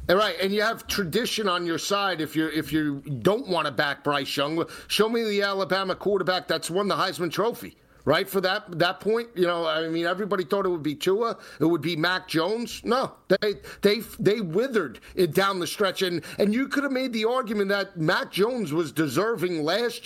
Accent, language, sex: American, English, male